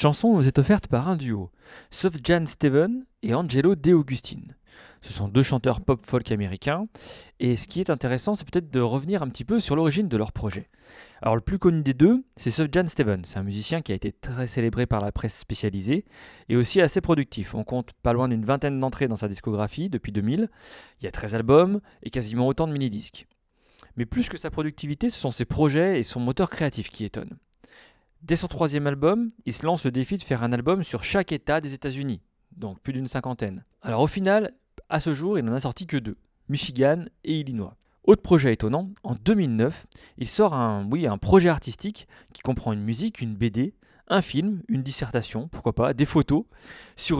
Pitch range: 115-165 Hz